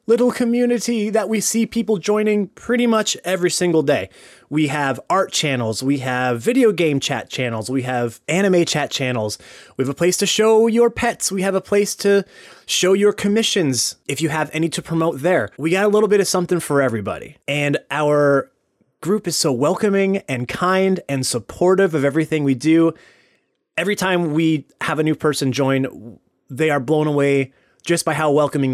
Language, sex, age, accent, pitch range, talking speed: English, male, 30-49, American, 135-185 Hz, 185 wpm